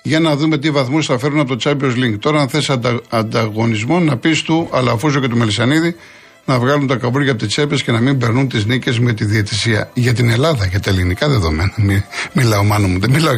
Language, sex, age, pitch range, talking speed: Greek, male, 50-69, 115-145 Hz, 235 wpm